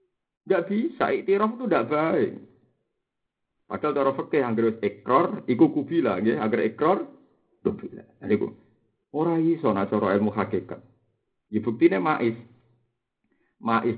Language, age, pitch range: Indonesian, 50-69, 110-155 Hz